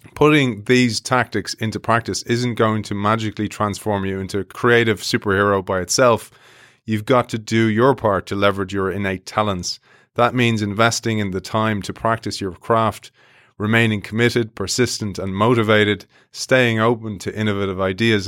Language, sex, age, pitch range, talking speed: English, male, 30-49, 100-115 Hz, 160 wpm